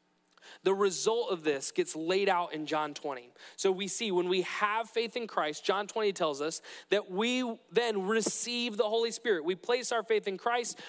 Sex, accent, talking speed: male, American, 200 wpm